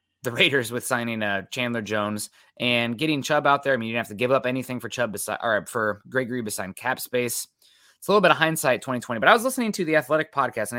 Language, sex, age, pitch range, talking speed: English, male, 20-39, 115-145 Hz, 265 wpm